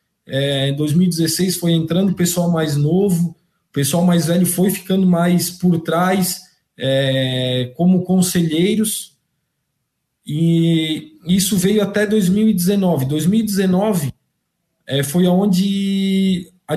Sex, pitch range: male, 165-200 Hz